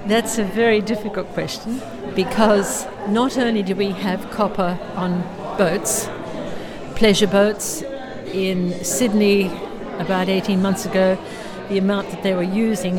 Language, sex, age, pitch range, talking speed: English, female, 60-79, 190-220 Hz, 130 wpm